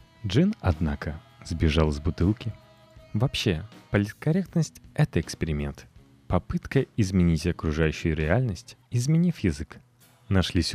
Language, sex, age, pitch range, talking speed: Russian, male, 30-49, 80-135 Hz, 90 wpm